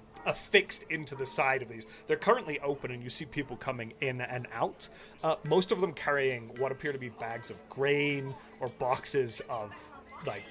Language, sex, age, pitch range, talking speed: English, male, 30-49, 110-150 Hz, 190 wpm